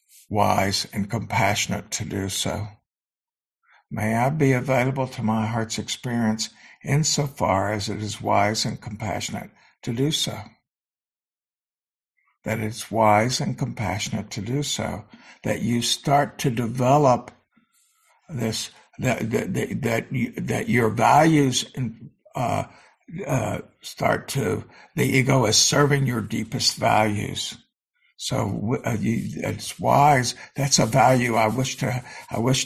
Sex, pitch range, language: male, 110-140 Hz, English